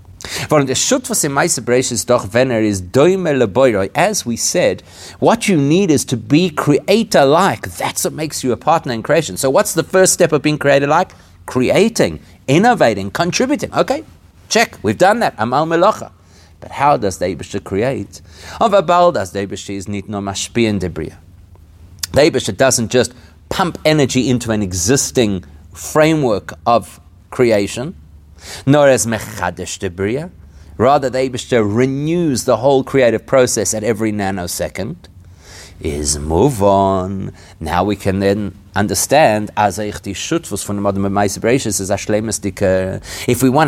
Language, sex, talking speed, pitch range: English, male, 105 wpm, 95-130 Hz